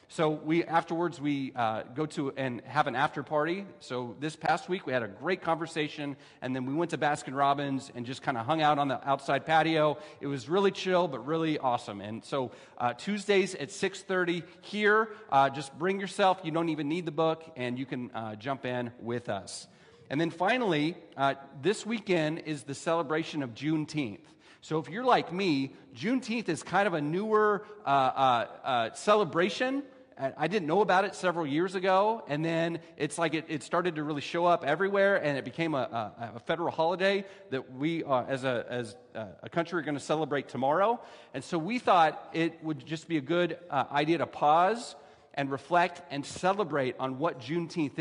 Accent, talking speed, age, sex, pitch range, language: American, 195 wpm, 40-59, male, 135-175 Hz, English